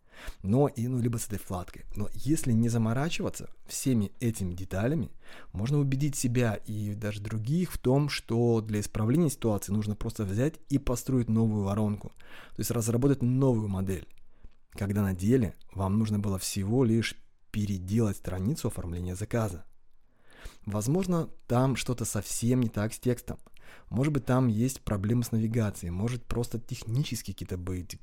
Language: Russian